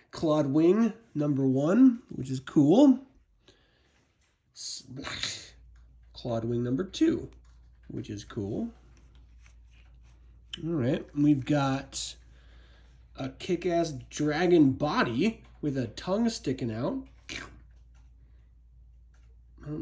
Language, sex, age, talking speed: English, male, 30-49, 90 wpm